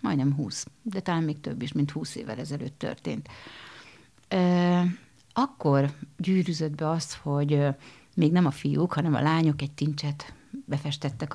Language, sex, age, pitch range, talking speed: Hungarian, female, 50-69, 150-190 Hz, 145 wpm